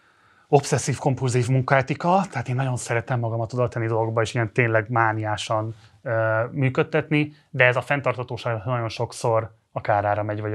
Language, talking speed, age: Hungarian, 140 wpm, 30-49